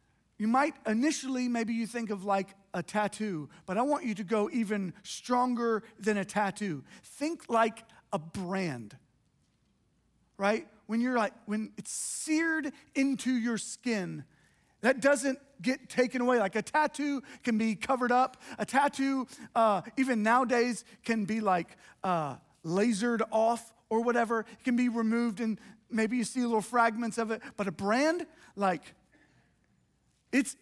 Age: 40-59